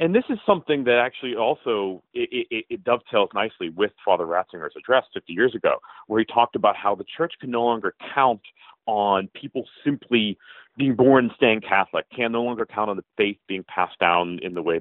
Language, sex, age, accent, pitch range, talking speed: English, male, 40-59, American, 100-160 Hz, 205 wpm